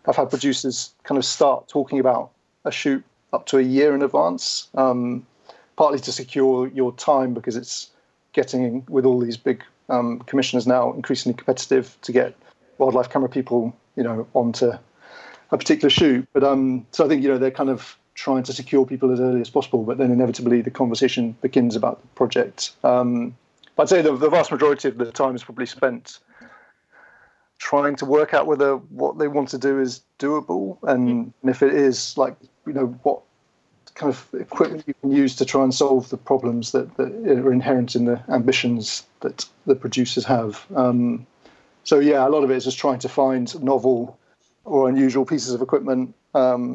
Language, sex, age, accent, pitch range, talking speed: English, male, 40-59, British, 125-135 Hz, 190 wpm